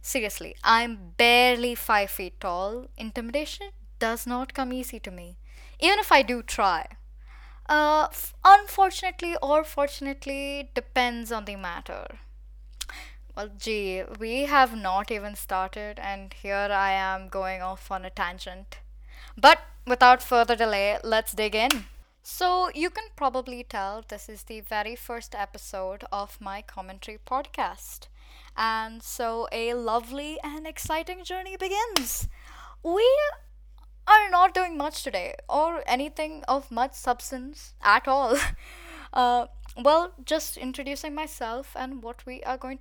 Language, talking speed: English, 135 wpm